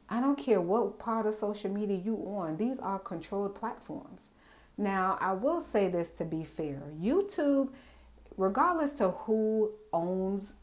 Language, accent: English, American